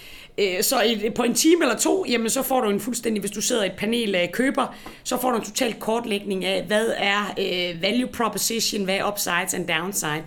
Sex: female